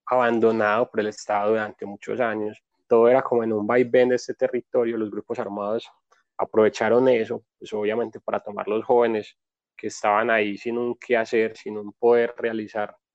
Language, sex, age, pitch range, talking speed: Spanish, male, 20-39, 110-120 Hz, 175 wpm